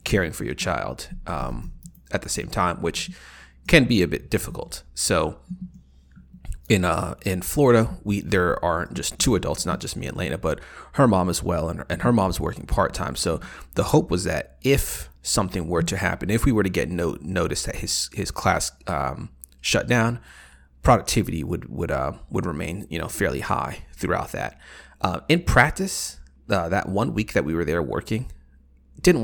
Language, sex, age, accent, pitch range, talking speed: English, male, 30-49, American, 70-105 Hz, 190 wpm